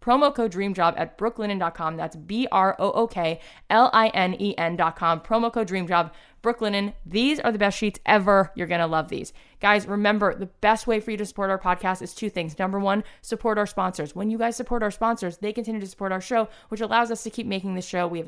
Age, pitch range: 20-39, 175-210 Hz